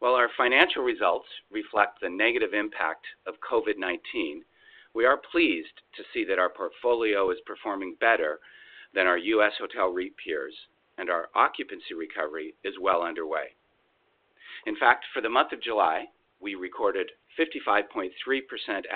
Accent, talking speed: American, 140 wpm